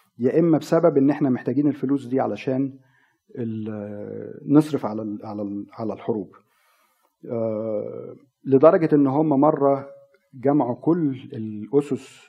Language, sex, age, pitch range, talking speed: Arabic, male, 50-69, 115-150 Hz, 115 wpm